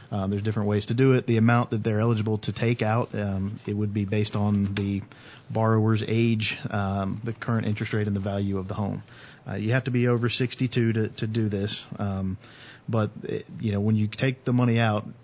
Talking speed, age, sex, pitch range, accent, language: 230 wpm, 40-59, male, 105-120 Hz, American, English